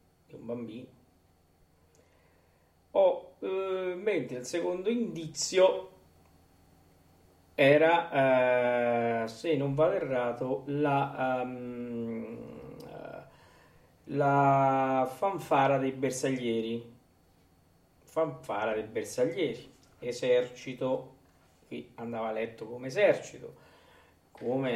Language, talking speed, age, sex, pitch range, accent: Italian, 75 wpm, 40-59, male, 120-155 Hz, native